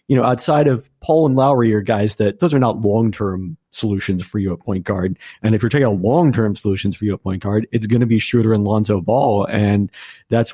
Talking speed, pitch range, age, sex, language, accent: 240 wpm, 105-125 Hz, 40-59, male, English, American